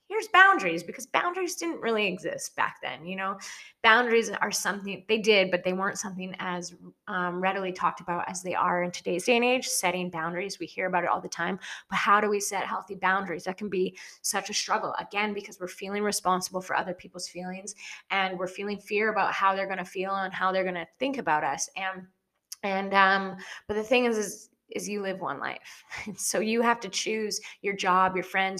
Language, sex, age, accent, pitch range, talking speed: English, female, 20-39, American, 185-215 Hz, 215 wpm